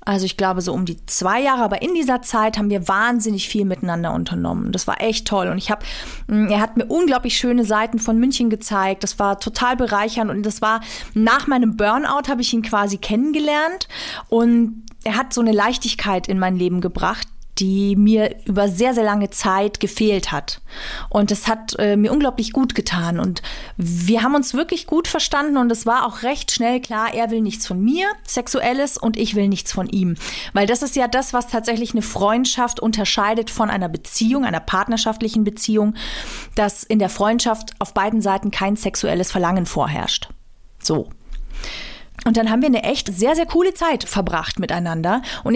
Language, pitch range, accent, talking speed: German, 200-245 Hz, German, 190 wpm